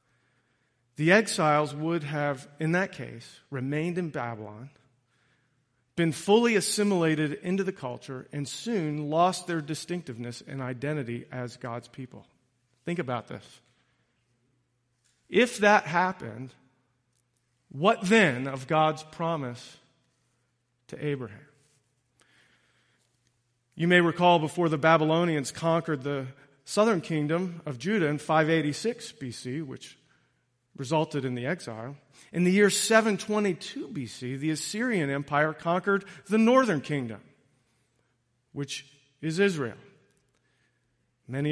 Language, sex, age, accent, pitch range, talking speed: English, male, 40-59, American, 125-170 Hz, 110 wpm